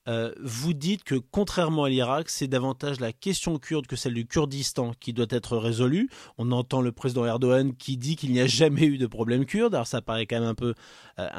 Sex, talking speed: male, 225 wpm